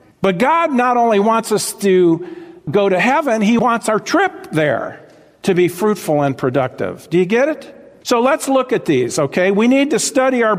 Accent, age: American, 50-69